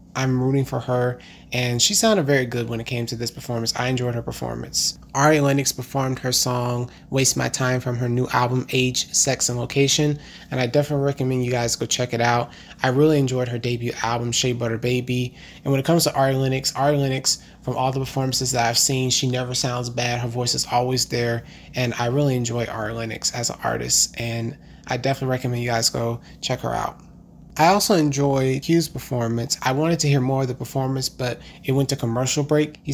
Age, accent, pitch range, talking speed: 30-49, American, 125-140 Hz, 215 wpm